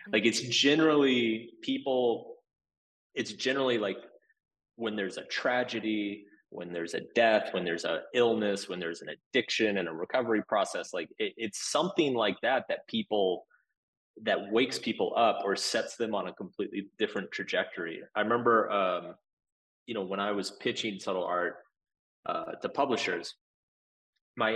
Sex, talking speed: male, 150 wpm